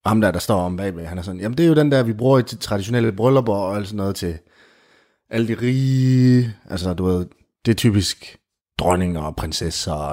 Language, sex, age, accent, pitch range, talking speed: Danish, male, 30-49, native, 90-120 Hz, 230 wpm